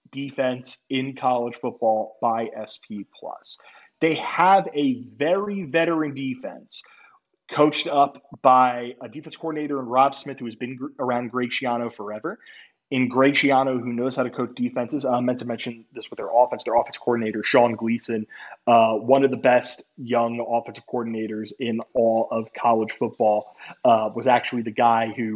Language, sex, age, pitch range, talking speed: English, male, 20-39, 115-145 Hz, 165 wpm